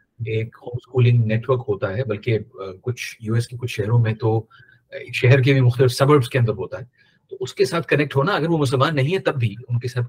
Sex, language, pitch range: male, Urdu, 115-145 Hz